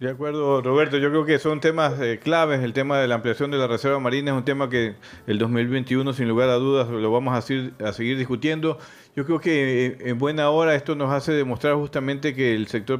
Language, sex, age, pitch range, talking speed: Spanish, male, 40-59, 115-140 Hz, 230 wpm